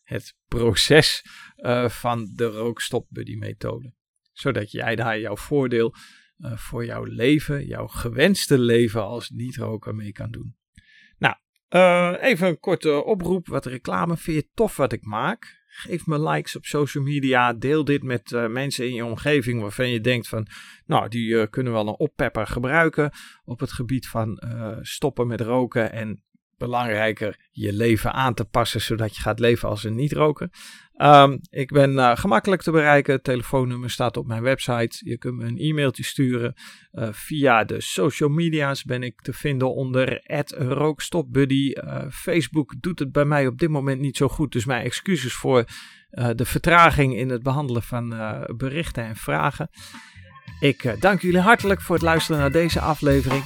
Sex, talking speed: male, 175 wpm